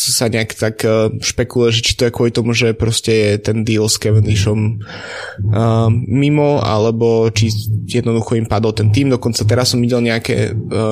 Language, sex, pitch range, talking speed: Slovak, male, 110-120 Hz, 165 wpm